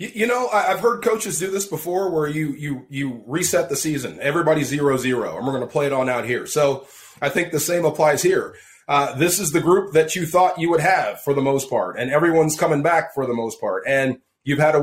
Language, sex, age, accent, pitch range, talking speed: English, male, 30-49, American, 150-195 Hz, 245 wpm